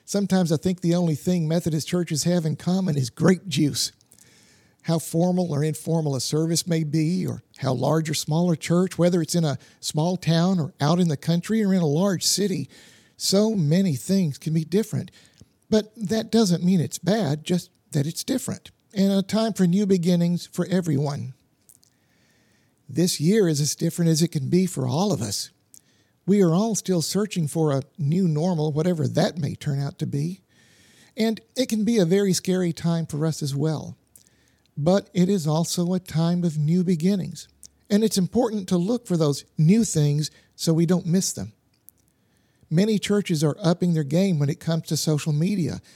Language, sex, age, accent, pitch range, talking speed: English, male, 50-69, American, 155-185 Hz, 190 wpm